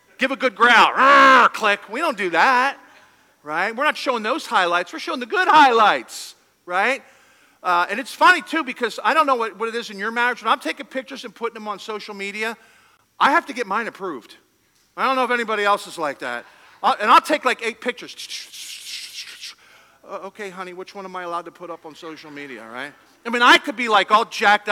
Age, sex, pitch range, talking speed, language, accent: 50-69, male, 185-270 Hz, 220 wpm, English, American